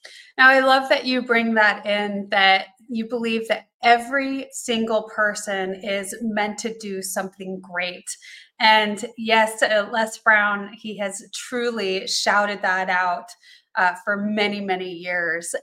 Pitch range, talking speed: 200-240 Hz, 140 wpm